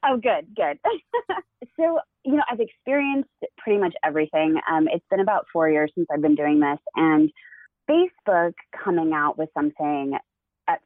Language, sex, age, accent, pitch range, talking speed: English, female, 20-39, American, 155-250 Hz, 160 wpm